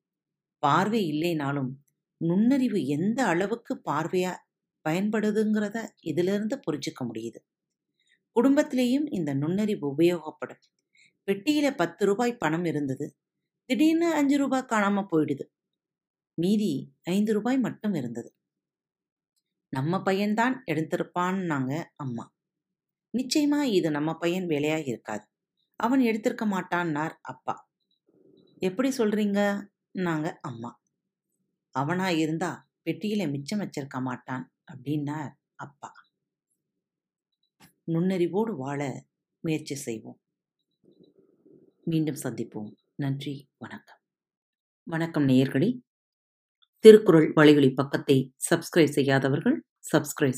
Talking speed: 85 wpm